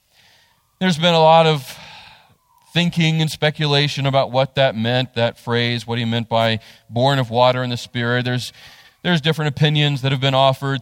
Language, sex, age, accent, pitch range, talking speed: English, male, 40-59, American, 120-160 Hz, 175 wpm